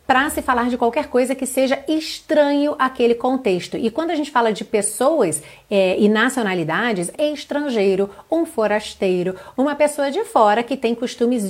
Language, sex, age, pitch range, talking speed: Portuguese, female, 40-59, 195-270 Hz, 160 wpm